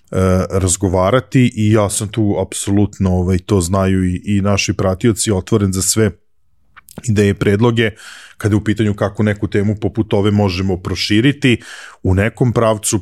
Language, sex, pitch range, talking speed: English, male, 95-110 Hz, 150 wpm